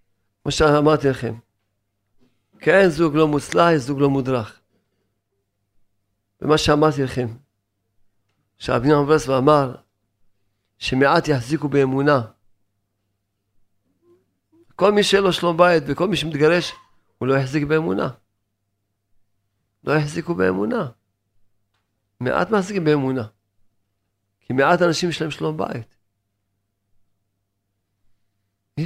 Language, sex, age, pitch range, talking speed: Hebrew, male, 50-69, 100-155 Hz, 95 wpm